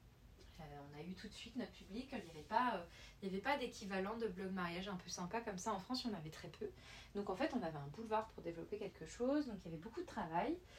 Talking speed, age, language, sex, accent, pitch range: 265 wpm, 30-49, French, female, French, 185-235 Hz